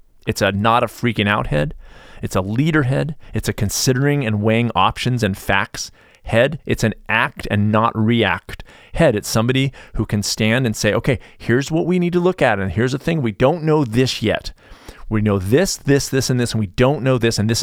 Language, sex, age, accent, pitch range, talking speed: English, male, 40-59, American, 100-130 Hz, 220 wpm